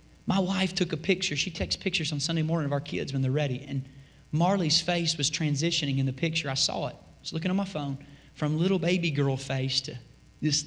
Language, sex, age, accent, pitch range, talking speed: English, male, 30-49, American, 145-190 Hz, 230 wpm